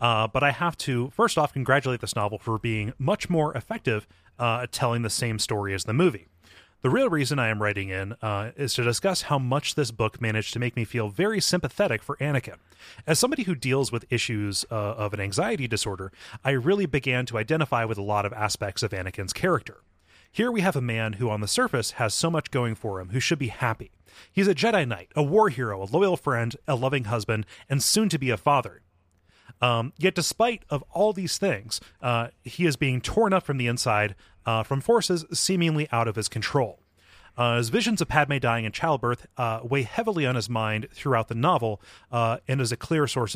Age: 30-49